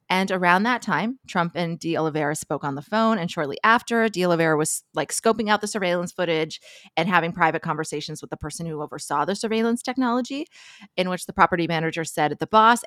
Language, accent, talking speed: English, American, 210 wpm